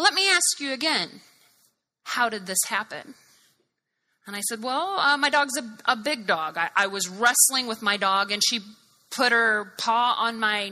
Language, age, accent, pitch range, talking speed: English, 30-49, American, 195-240 Hz, 190 wpm